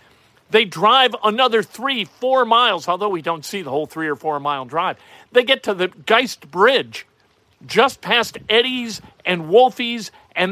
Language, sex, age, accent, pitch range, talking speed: English, male, 50-69, American, 180-255 Hz, 160 wpm